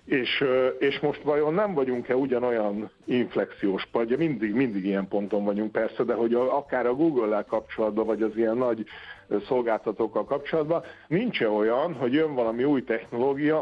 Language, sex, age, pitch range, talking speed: Hungarian, male, 50-69, 110-150 Hz, 155 wpm